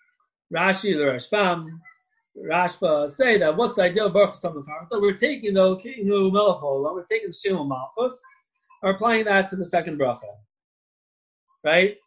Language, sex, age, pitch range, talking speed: English, male, 30-49, 175-240 Hz, 150 wpm